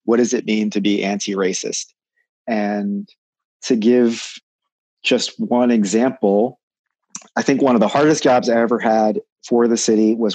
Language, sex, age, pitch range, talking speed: English, male, 40-59, 105-125 Hz, 155 wpm